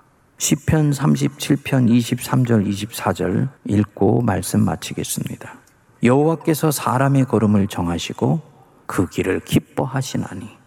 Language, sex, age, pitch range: Korean, male, 40-59, 95-140 Hz